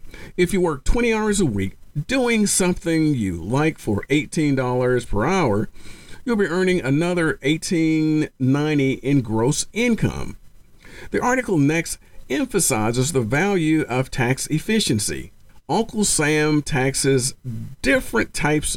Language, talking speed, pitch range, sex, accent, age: English, 120 wpm, 120-160 Hz, male, American, 50-69